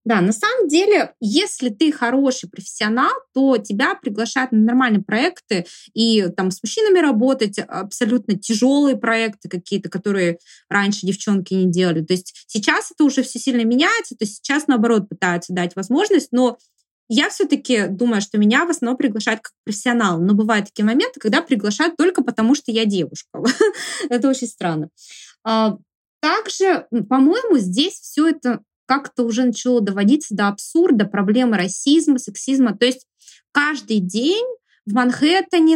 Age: 20-39